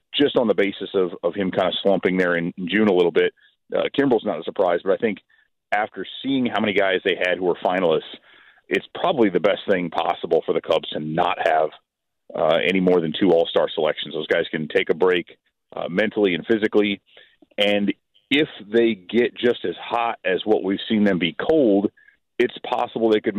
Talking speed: 210 wpm